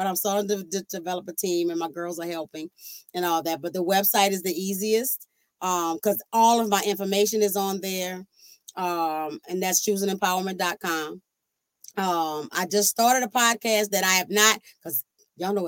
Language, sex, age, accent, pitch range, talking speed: English, female, 30-49, American, 175-205 Hz, 175 wpm